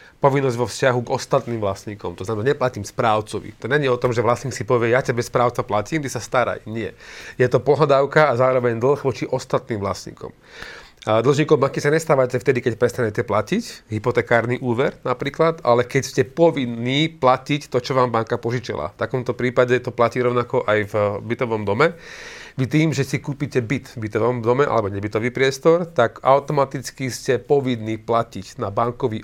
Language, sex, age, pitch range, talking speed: Slovak, male, 30-49, 115-140 Hz, 175 wpm